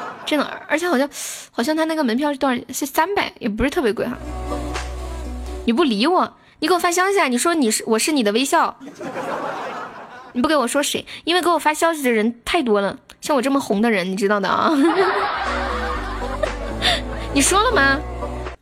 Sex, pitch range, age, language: female, 220-295 Hz, 20-39, Chinese